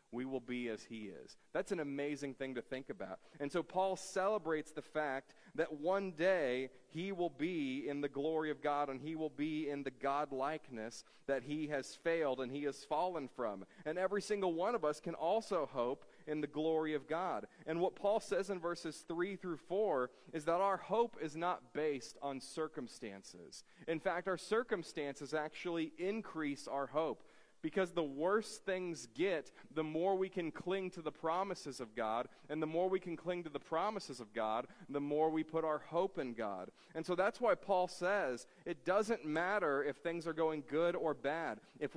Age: 40-59